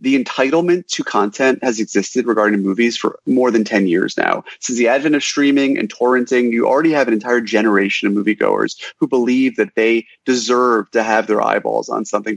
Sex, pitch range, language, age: male, 105-145 Hz, English, 30-49